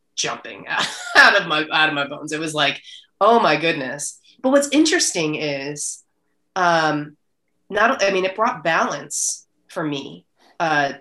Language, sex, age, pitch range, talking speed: English, female, 20-39, 140-185 Hz, 160 wpm